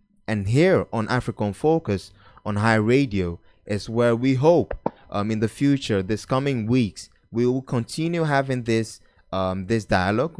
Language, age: English, 20-39